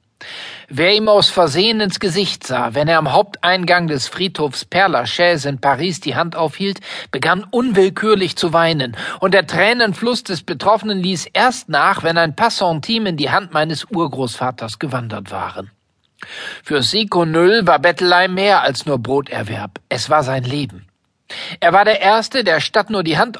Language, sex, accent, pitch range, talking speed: German, male, German, 145-200 Hz, 160 wpm